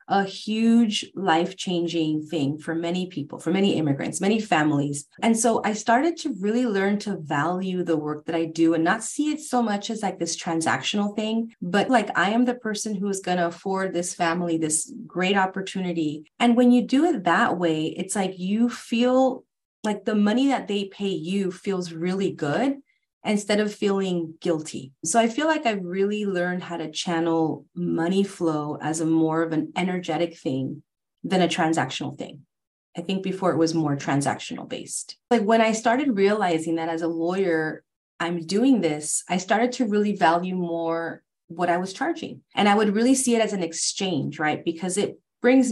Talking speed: 190 wpm